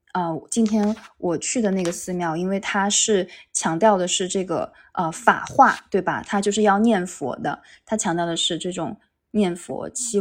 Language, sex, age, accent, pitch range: Chinese, female, 20-39, native, 175-220 Hz